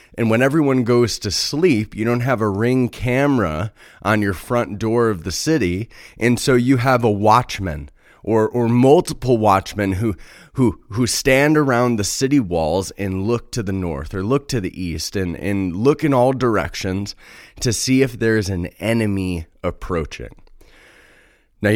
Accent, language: American, English